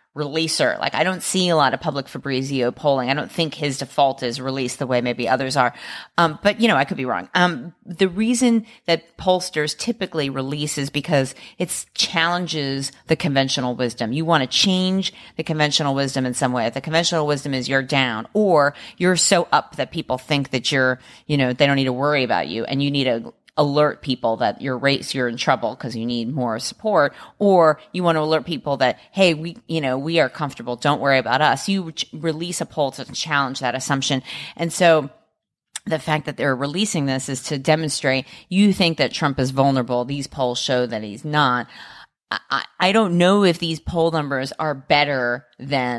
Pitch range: 130-165 Hz